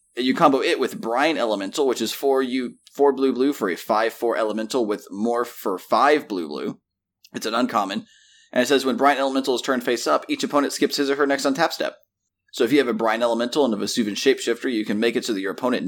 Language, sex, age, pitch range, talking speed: English, male, 30-49, 110-140 Hz, 245 wpm